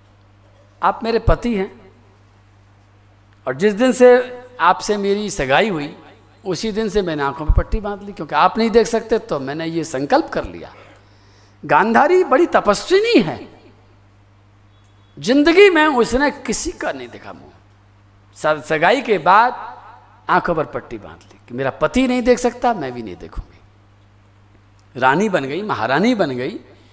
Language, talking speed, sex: Hindi, 150 wpm, male